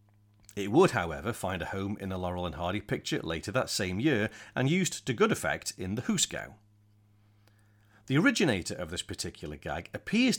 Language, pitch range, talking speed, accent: English, 100-125 Hz, 180 wpm, British